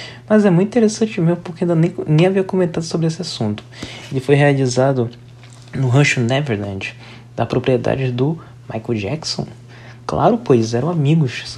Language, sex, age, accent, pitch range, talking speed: Portuguese, male, 20-39, Brazilian, 120-145 Hz, 155 wpm